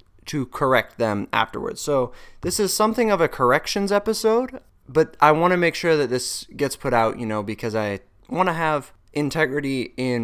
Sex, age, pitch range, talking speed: male, 20-39, 115-165 Hz, 175 wpm